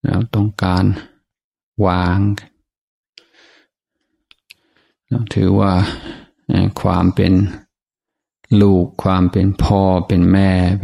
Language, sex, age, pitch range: Thai, male, 50-69, 90-100 Hz